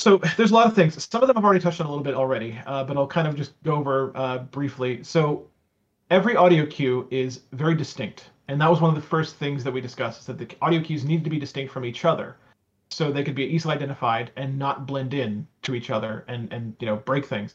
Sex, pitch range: male, 130-160 Hz